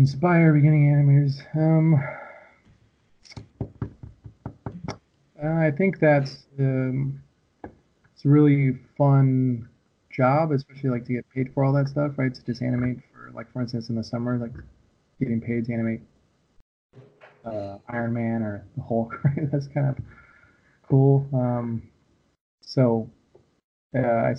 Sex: male